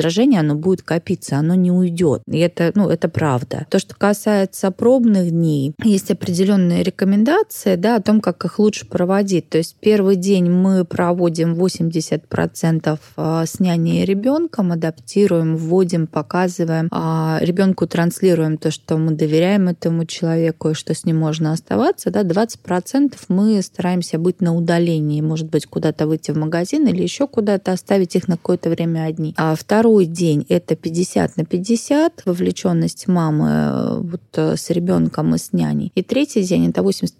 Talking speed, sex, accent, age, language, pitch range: 155 wpm, female, native, 20-39, Russian, 160-200 Hz